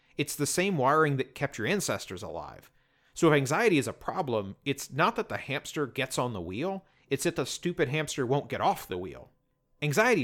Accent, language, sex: American, English, male